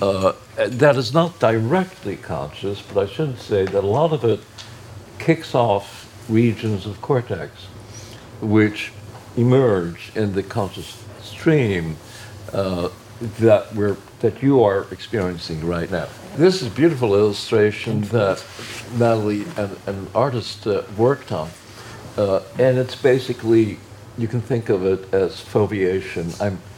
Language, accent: English, American